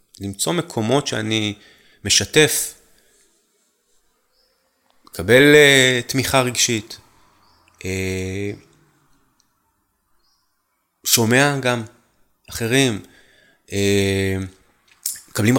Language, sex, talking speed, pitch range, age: Hebrew, male, 40 wpm, 100-130 Hz, 30-49